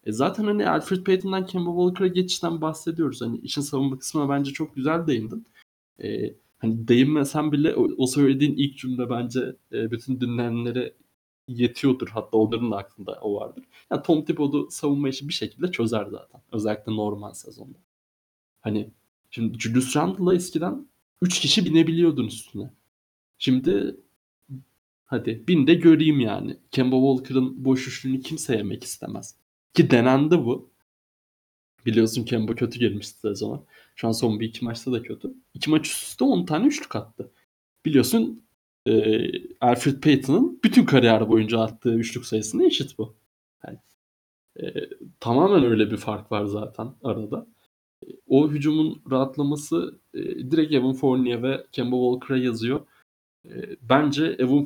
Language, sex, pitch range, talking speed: Turkish, male, 115-155 Hz, 145 wpm